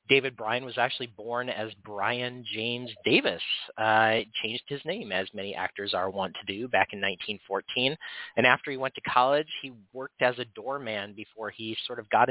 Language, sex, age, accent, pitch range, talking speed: English, male, 30-49, American, 105-130 Hz, 190 wpm